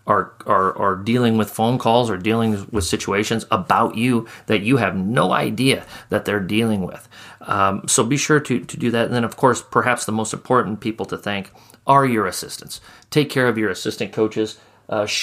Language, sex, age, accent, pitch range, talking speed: English, male, 40-59, American, 105-120 Hz, 200 wpm